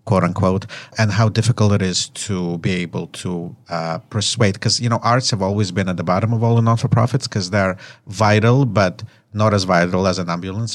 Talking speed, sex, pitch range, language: 200 wpm, male, 95-120 Hz, English